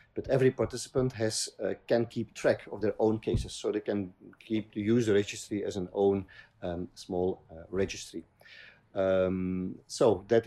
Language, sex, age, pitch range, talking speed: English, male, 50-69, 95-115 Hz, 165 wpm